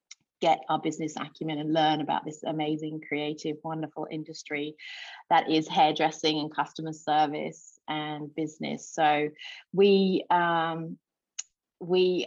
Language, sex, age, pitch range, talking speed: English, female, 30-49, 155-170 Hz, 115 wpm